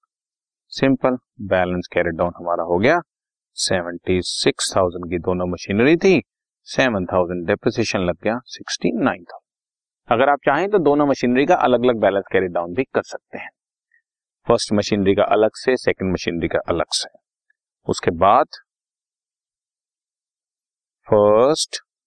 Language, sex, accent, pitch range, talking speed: Hindi, male, native, 90-135 Hz, 120 wpm